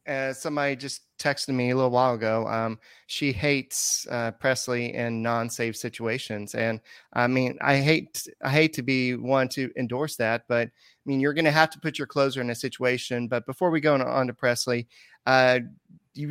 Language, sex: English, male